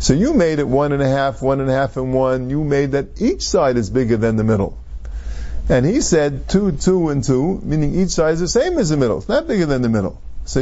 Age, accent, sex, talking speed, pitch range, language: 50-69, American, male, 265 wpm, 105-165 Hz, English